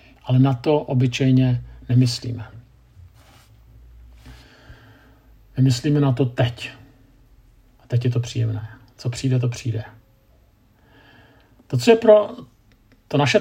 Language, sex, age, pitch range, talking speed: Czech, male, 50-69, 120-145 Hz, 110 wpm